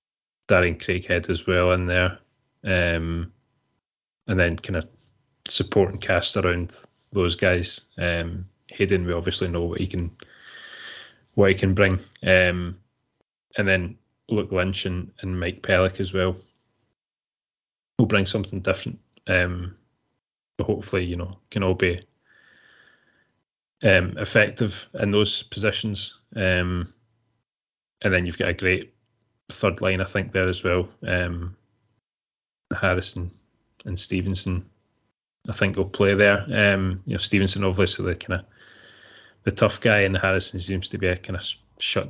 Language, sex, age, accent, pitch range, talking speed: English, male, 20-39, British, 90-105 Hz, 145 wpm